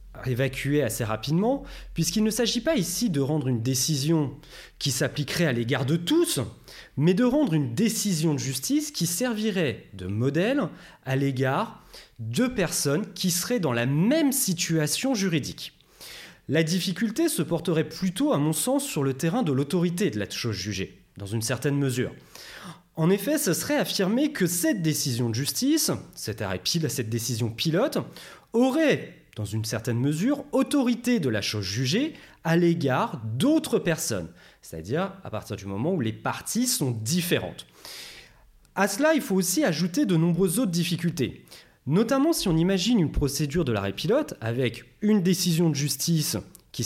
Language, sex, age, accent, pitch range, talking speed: French, male, 30-49, French, 125-195 Hz, 165 wpm